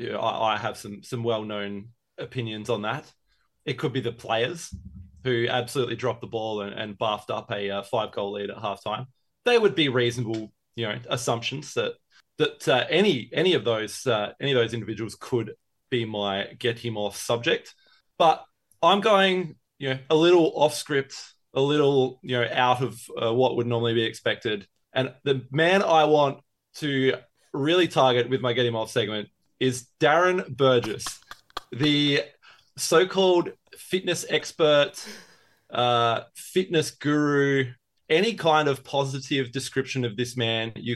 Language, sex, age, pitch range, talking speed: English, male, 20-39, 115-150 Hz, 160 wpm